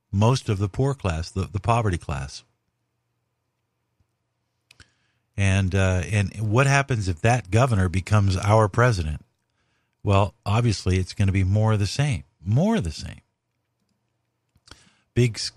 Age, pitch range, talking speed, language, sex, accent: 50-69, 100-120 Hz, 135 wpm, English, male, American